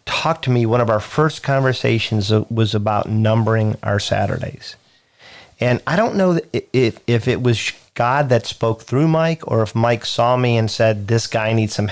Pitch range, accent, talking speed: 105-125 Hz, American, 180 wpm